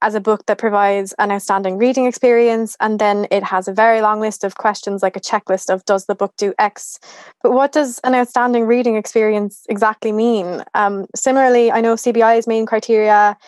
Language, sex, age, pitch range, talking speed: English, female, 20-39, 205-245 Hz, 195 wpm